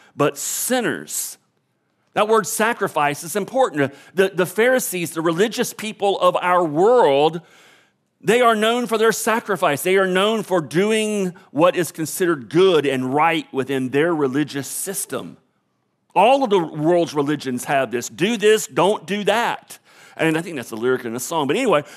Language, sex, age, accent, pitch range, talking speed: English, male, 40-59, American, 140-210 Hz, 165 wpm